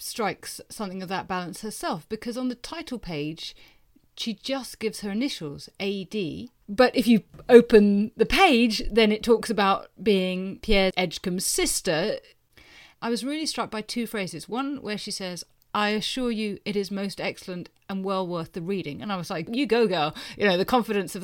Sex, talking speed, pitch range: female, 185 wpm, 185-235 Hz